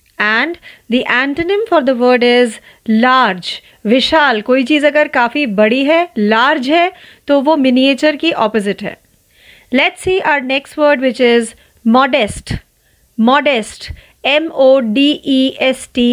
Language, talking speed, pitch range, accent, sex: Marathi, 110 wpm, 235-295 Hz, native, female